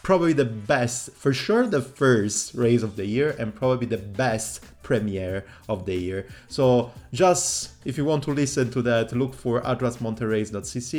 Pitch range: 105-135 Hz